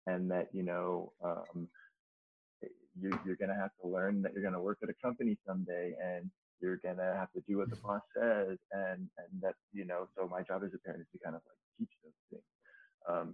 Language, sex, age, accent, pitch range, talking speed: English, male, 20-39, American, 90-110 Hz, 235 wpm